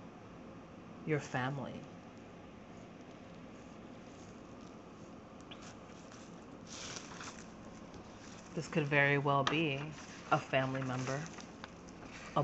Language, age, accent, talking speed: English, 30-49, American, 55 wpm